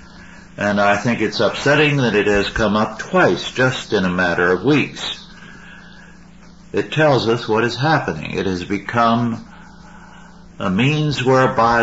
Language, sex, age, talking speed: English, male, 60-79, 145 wpm